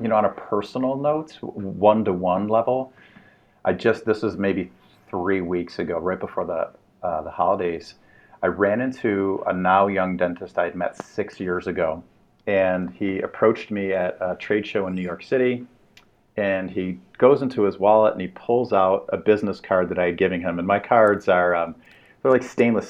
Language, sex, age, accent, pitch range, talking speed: English, male, 40-59, American, 90-105 Hz, 190 wpm